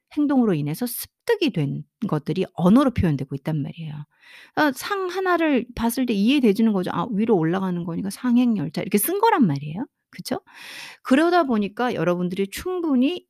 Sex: female